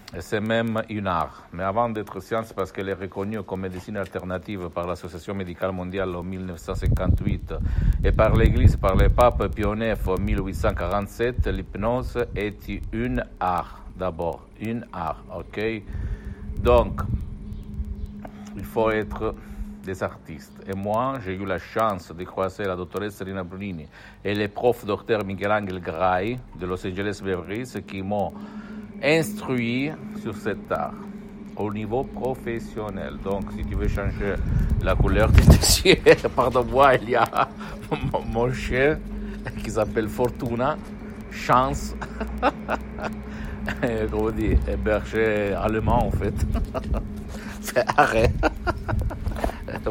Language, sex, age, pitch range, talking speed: Italian, male, 60-79, 95-115 Hz, 125 wpm